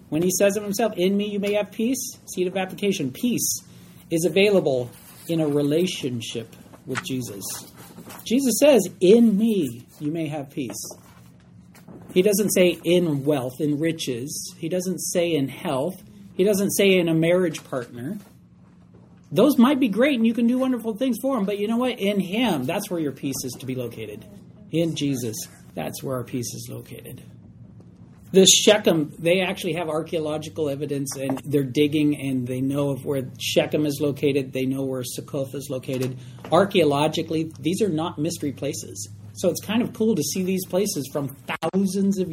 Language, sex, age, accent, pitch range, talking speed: English, male, 40-59, American, 135-190 Hz, 175 wpm